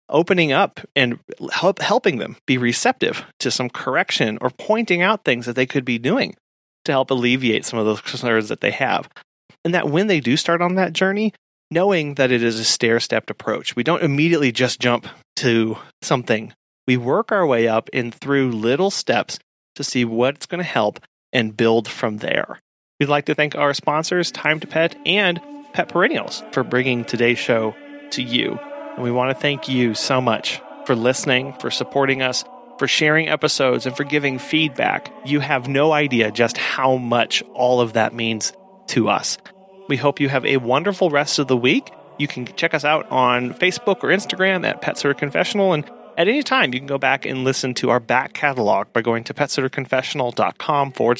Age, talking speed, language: 30-49, 190 wpm, English